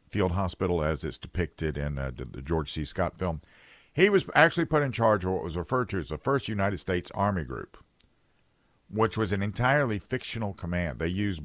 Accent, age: American, 50-69